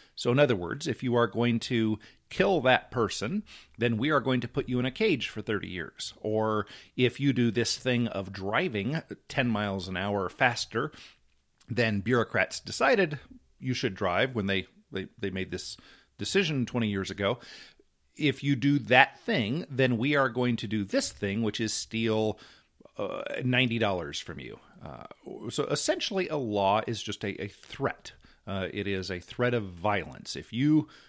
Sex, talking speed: male, 180 wpm